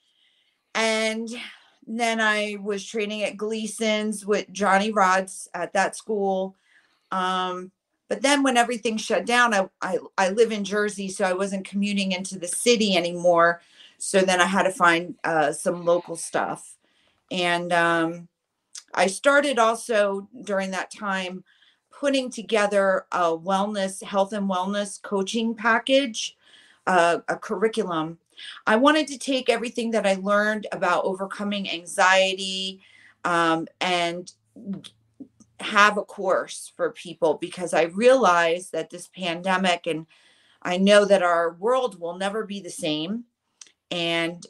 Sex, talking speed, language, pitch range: female, 135 wpm, English, 170-215 Hz